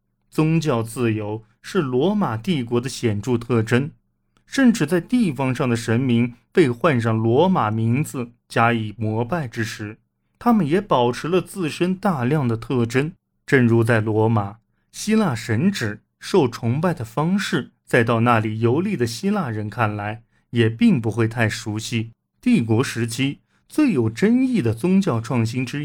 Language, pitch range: Chinese, 110-155 Hz